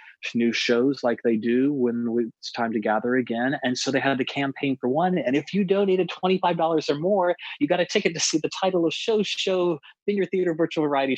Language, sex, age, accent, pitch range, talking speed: English, male, 30-49, American, 115-150 Hz, 220 wpm